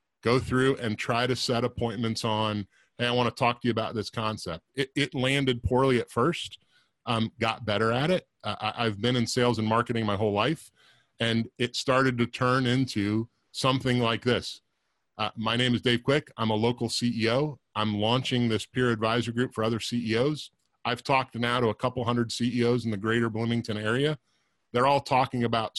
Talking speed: 195 wpm